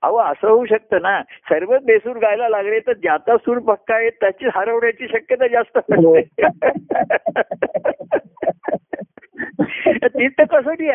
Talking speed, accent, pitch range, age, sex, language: 105 wpm, native, 185-285 Hz, 50-69, male, Marathi